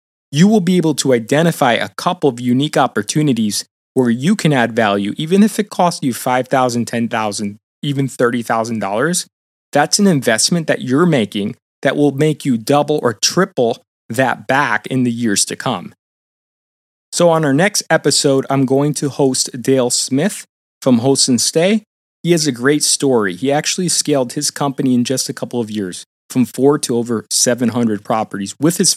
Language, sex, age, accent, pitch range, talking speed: English, male, 30-49, American, 115-150 Hz, 175 wpm